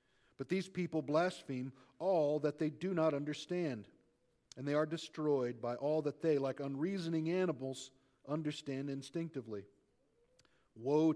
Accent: American